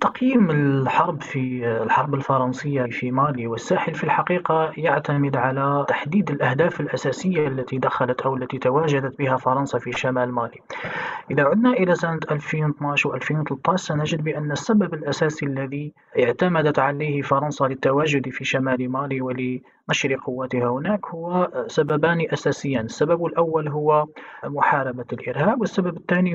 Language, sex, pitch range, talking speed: Arabic, male, 135-165 Hz, 130 wpm